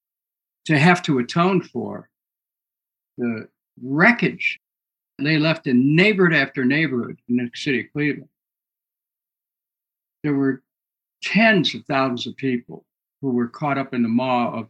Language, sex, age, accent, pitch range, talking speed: English, male, 60-79, American, 120-150 Hz, 135 wpm